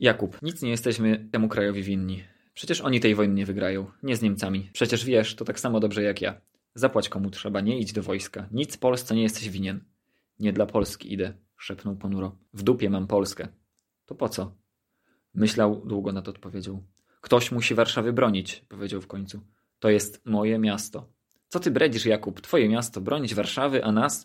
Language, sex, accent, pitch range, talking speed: Polish, male, native, 105-120 Hz, 185 wpm